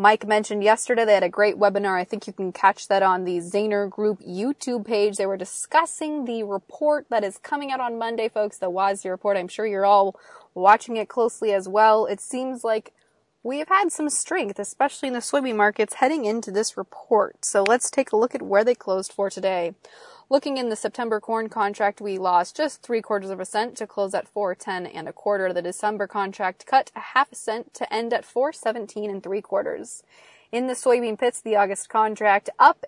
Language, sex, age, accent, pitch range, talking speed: English, female, 20-39, American, 195-235 Hz, 210 wpm